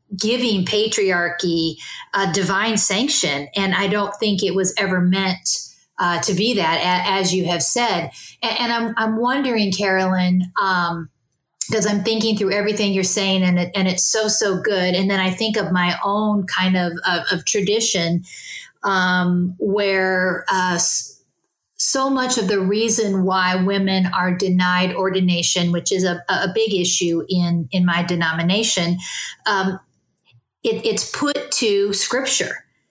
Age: 40-59